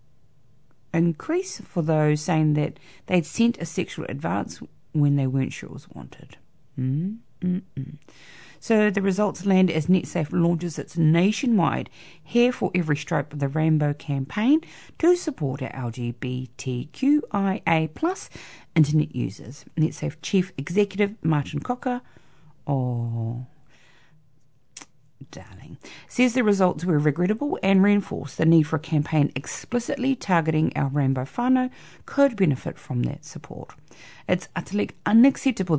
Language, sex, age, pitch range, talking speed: English, female, 40-59, 145-205 Hz, 120 wpm